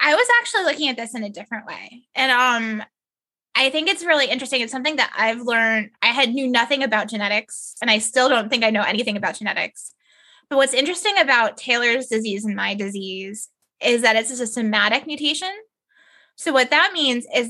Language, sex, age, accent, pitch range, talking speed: English, female, 20-39, American, 220-270 Hz, 200 wpm